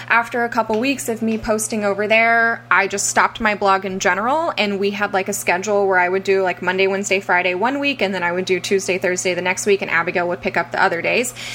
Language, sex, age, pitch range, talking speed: English, female, 10-29, 190-230 Hz, 260 wpm